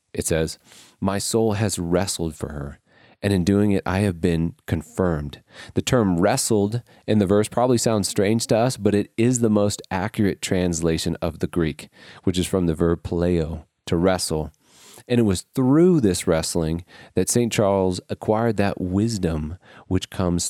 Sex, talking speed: male, 175 wpm